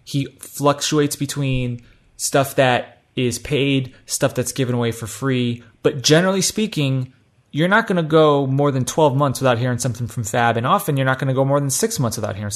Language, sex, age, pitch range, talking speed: English, male, 20-39, 120-150 Hz, 205 wpm